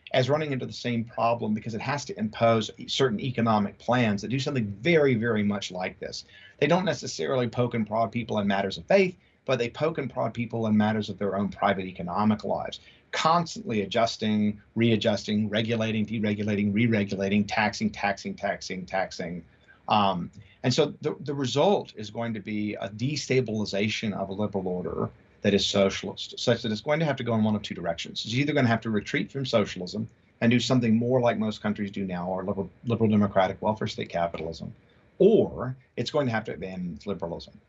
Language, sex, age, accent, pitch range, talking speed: English, male, 50-69, American, 100-125 Hz, 195 wpm